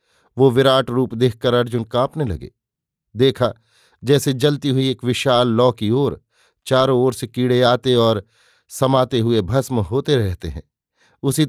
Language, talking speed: Hindi, 150 wpm